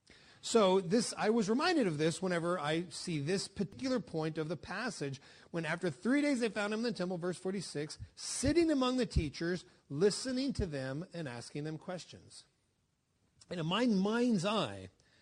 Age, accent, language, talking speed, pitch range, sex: 40-59, American, English, 175 wpm, 145-205 Hz, male